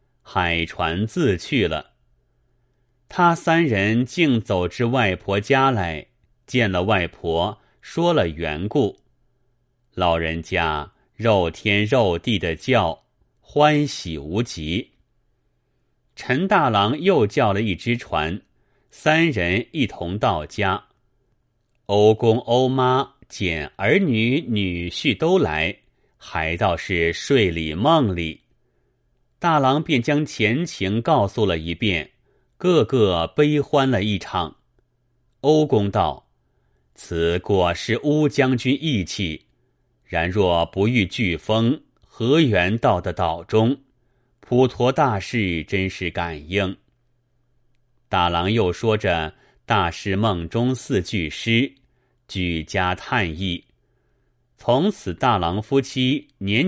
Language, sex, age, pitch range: Chinese, male, 30-49, 90-125 Hz